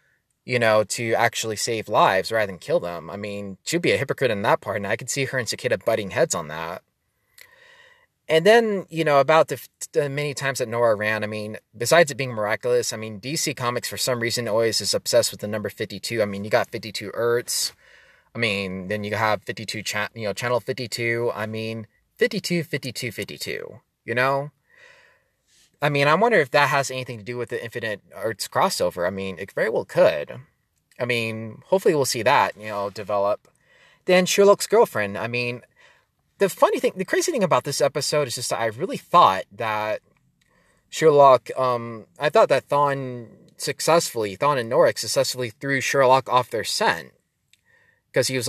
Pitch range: 110-145 Hz